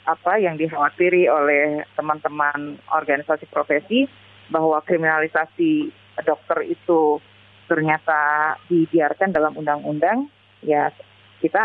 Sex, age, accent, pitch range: female, 30-49, native, 145-170 Hz